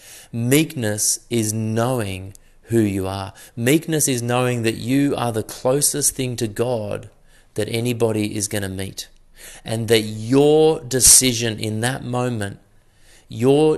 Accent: Australian